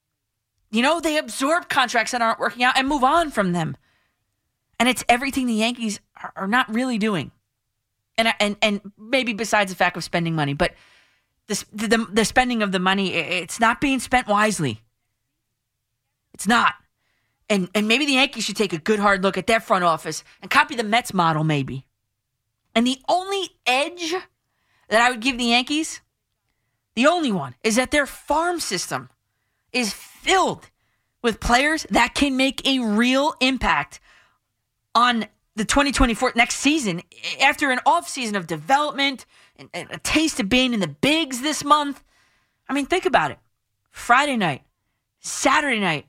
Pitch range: 180-270 Hz